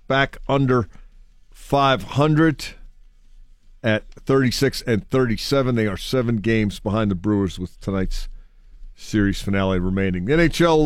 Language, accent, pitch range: English, American, 105-135 Hz